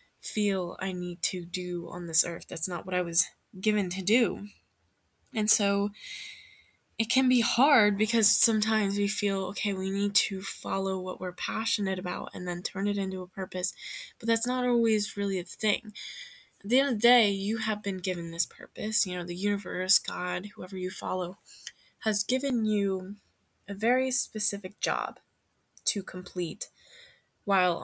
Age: 10-29